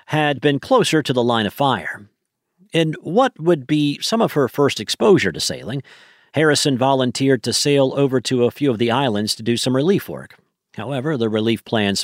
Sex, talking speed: male, 195 wpm